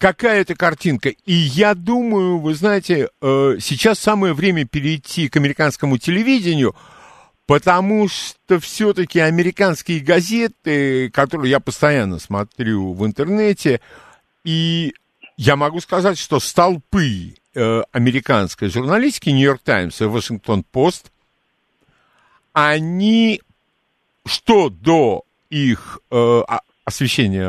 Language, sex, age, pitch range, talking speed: Russian, male, 50-69, 115-175 Hz, 100 wpm